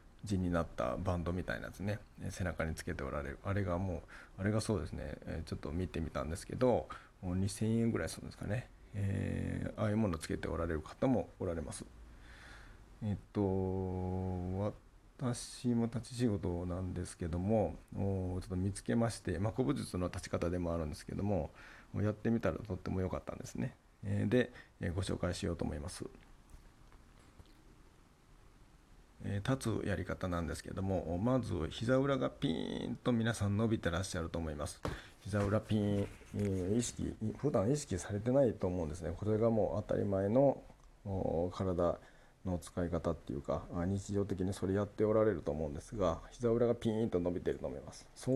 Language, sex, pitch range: Japanese, male, 90-110 Hz